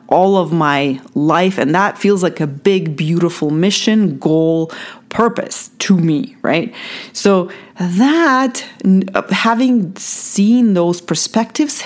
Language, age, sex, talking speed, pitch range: English, 40-59, female, 115 wpm, 175-230 Hz